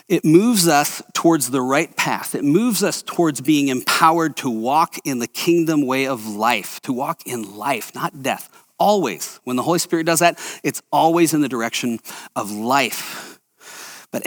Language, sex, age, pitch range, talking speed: English, male, 40-59, 130-175 Hz, 175 wpm